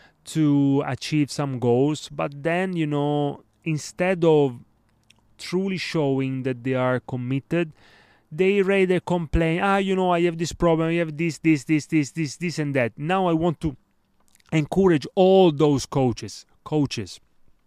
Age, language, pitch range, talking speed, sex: 30-49, English, 130-165 Hz, 155 wpm, male